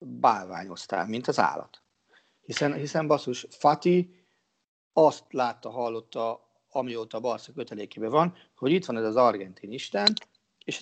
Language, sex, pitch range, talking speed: Hungarian, male, 115-165 Hz, 130 wpm